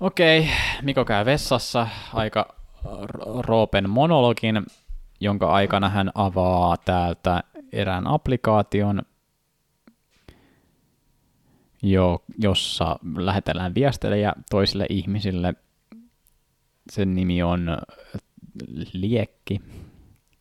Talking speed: 75 wpm